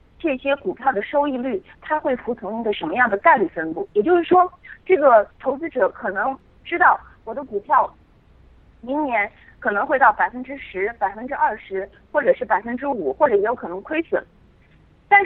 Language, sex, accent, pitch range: Chinese, female, native, 235-330 Hz